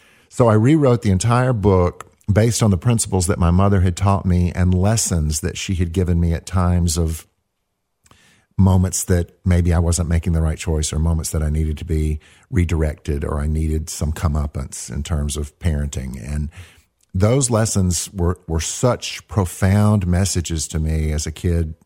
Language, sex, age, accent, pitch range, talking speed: English, male, 50-69, American, 80-105 Hz, 180 wpm